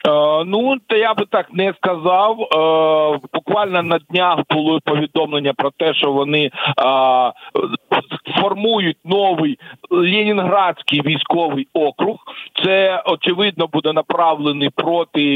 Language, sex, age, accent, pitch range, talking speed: Ukrainian, male, 50-69, native, 155-190 Hz, 100 wpm